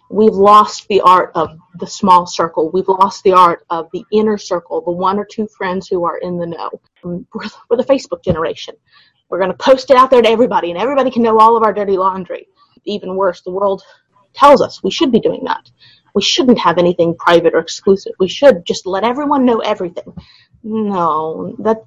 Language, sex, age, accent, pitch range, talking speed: English, female, 30-49, American, 185-245 Hz, 205 wpm